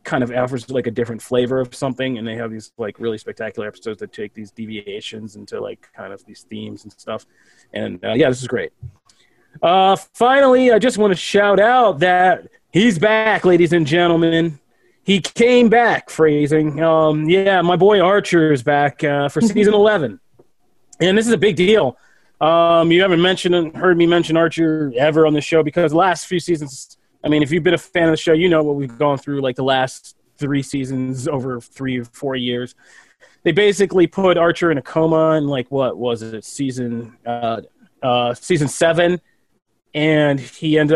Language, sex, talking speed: English, male, 195 wpm